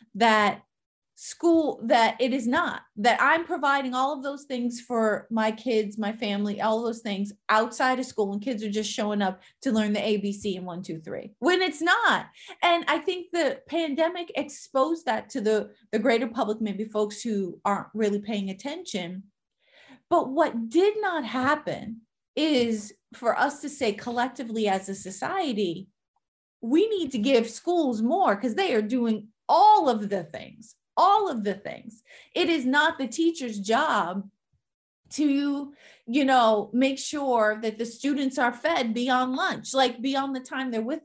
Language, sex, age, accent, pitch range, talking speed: English, female, 30-49, American, 215-290 Hz, 170 wpm